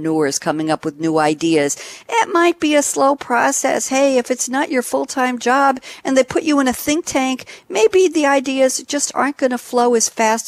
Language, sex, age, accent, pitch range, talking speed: English, female, 60-79, American, 155-245 Hz, 205 wpm